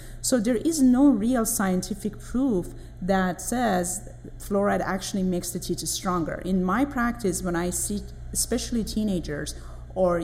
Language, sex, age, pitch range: English, female, 30-49, 170-205 Hz